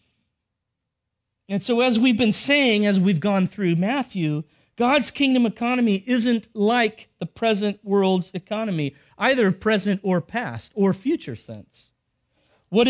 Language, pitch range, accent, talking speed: English, 175-225 Hz, American, 130 wpm